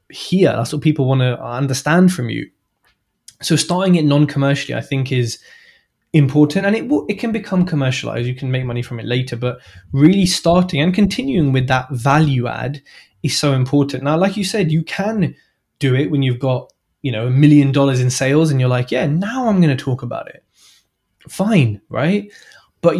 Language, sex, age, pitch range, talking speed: English, male, 20-39, 130-175 Hz, 200 wpm